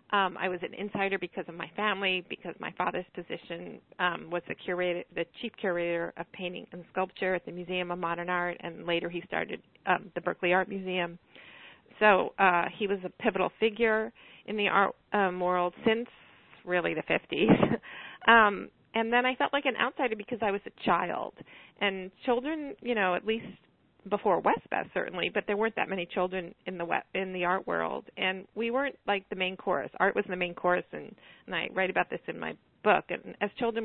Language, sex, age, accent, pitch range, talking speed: English, female, 40-59, American, 180-225 Hz, 200 wpm